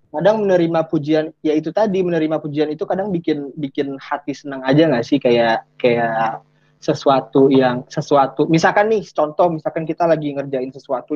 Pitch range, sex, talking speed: 135-165 Hz, male, 150 wpm